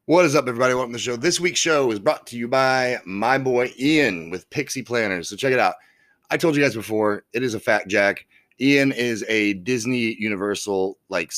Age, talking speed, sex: 30-49, 220 wpm, male